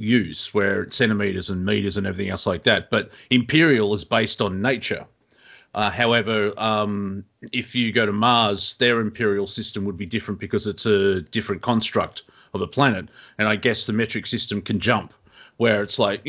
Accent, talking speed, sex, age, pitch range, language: Australian, 185 wpm, male, 30-49, 105-125 Hz, English